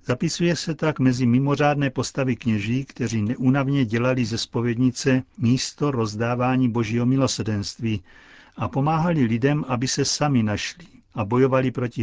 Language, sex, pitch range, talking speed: Czech, male, 110-135 Hz, 130 wpm